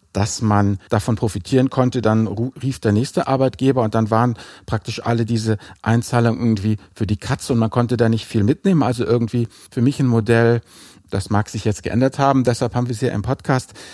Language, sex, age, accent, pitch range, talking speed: German, male, 50-69, German, 115-135 Hz, 200 wpm